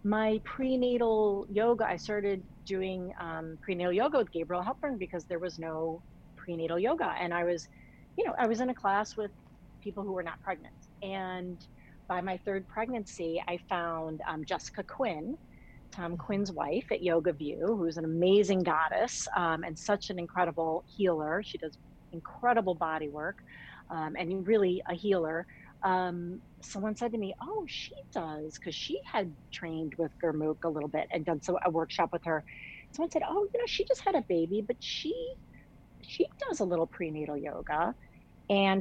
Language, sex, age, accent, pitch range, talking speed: English, female, 40-59, American, 170-220 Hz, 175 wpm